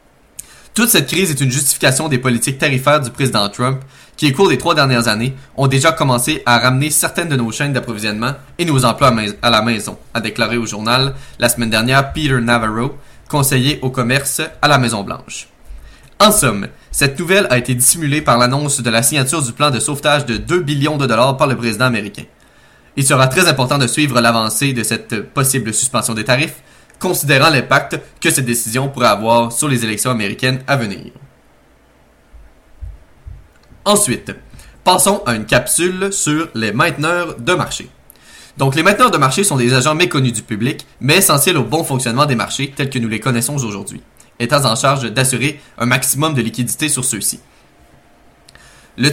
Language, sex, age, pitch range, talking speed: French, male, 20-39, 115-145 Hz, 180 wpm